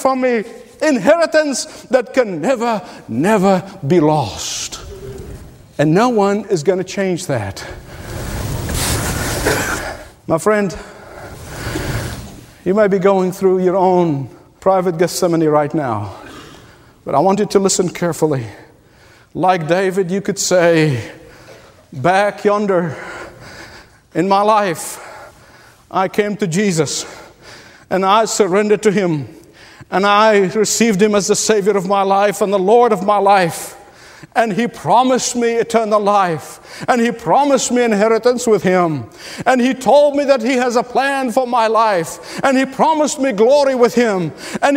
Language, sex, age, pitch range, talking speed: English, male, 50-69, 175-245 Hz, 140 wpm